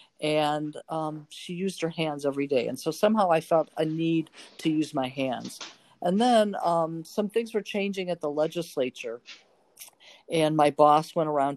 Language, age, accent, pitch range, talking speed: English, 50-69, American, 140-180 Hz, 175 wpm